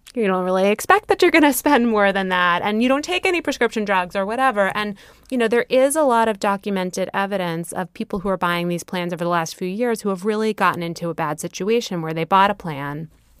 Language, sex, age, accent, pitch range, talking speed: English, female, 20-39, American, 175-225 Hz, 250 wpm